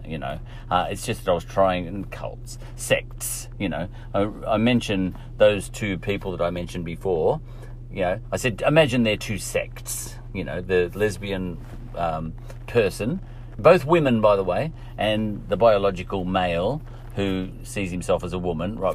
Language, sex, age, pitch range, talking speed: English, male, 40-59, 90-120 Hz, 170 wpm